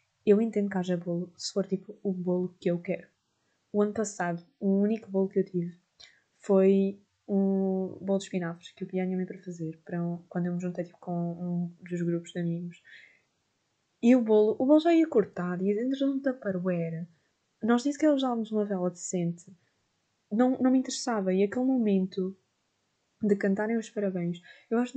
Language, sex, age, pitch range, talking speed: Portuguese, female, 20-39, 180-205 Hz, 190 wpm